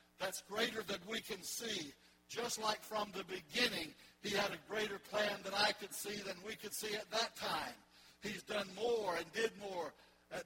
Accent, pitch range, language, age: American, 180-205 Hz, English, 60-79